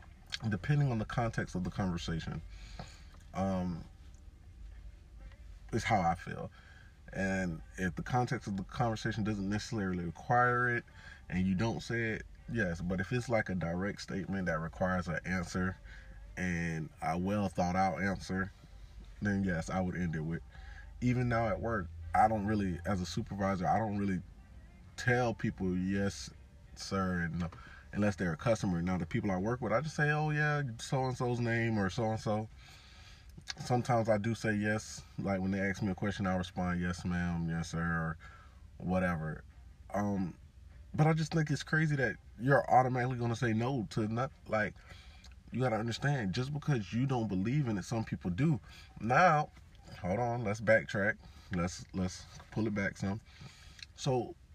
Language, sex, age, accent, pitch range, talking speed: English, male, 20-39, American, 85-115 Hz, 165 wpm